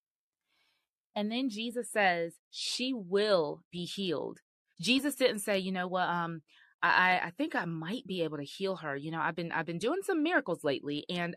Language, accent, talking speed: English, American, 195 wpm